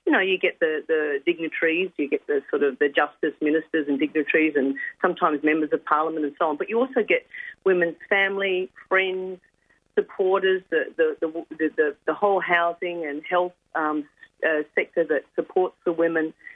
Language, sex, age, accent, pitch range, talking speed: English, female, 40-59, Australian, 160-215 Hz, 180 wpm